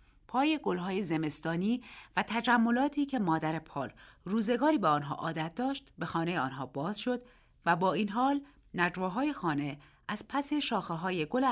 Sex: female